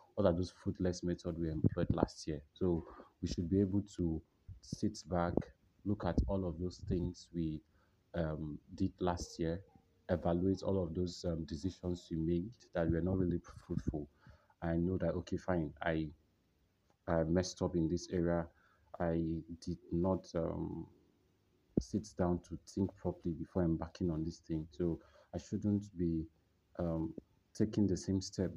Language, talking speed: English, 160 wpm